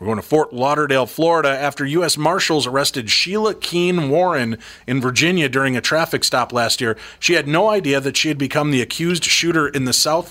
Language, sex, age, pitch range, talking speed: English, male, 30-49, 120-155 Hz, 205 wpm